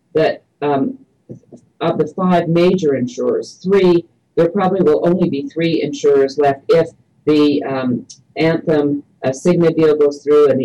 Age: 50-69